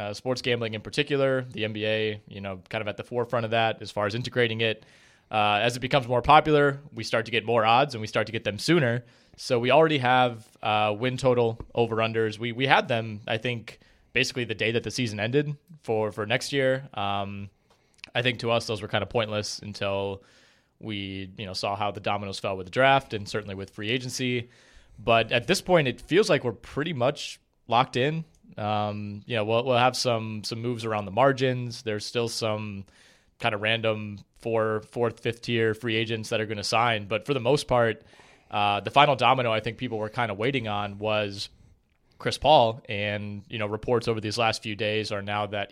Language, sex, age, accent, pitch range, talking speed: English, male, 20-39, American, 105-125 Hz, 215 wpm